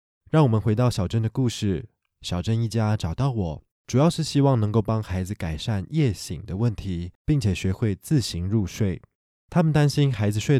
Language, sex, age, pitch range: Chinese, male, 20-39, 95-125 Hz